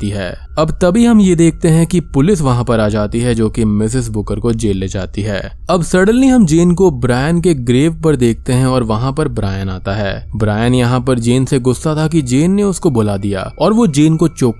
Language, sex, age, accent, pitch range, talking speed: Hindi, male, 20-39, native, 105-140 Hz, 180 wpm